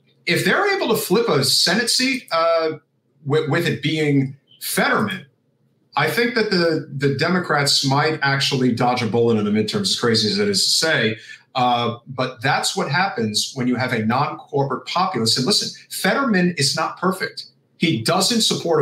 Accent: American